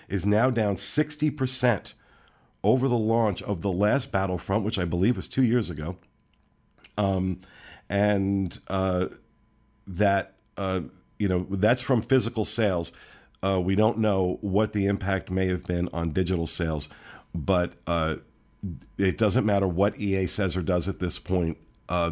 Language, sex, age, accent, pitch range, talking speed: English, male, 50-69, American, 85-105 Hz, 150 wpm